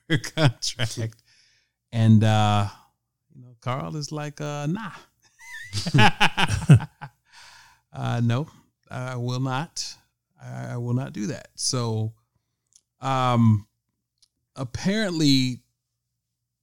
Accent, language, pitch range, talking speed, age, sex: American, English, 105-120 Hz, 85 wpm, 30-49, male